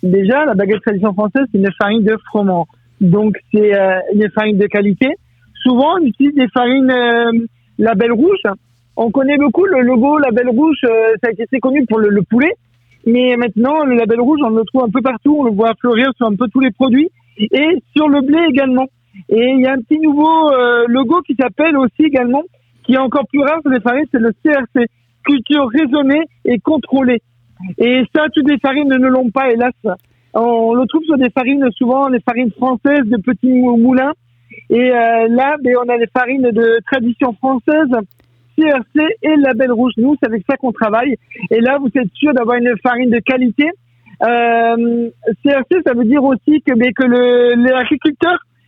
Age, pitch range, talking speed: 50-69, 225-275 Hz, 200 wpm